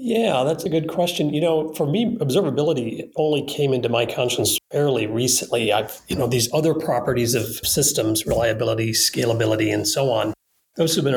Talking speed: 170 wpm